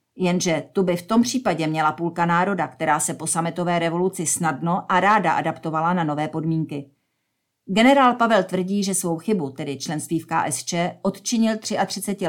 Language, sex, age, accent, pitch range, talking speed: Czech, female, 40-59, native, 160-190 Hz, 160 wpm